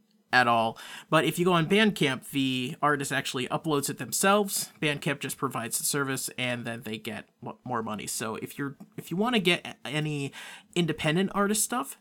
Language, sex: English, male